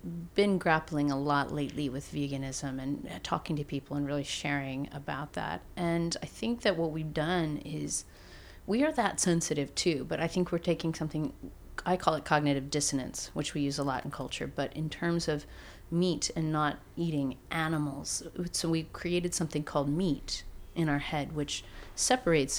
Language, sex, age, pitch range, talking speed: English, female, 40-59, 145-170 Hz, 180 wpm